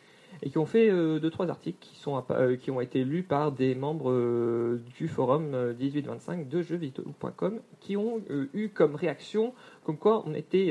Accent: French